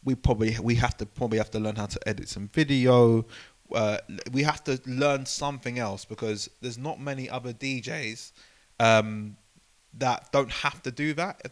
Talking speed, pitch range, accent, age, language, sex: 180 wpm, 105-135 Hz, British, 20-39, English, male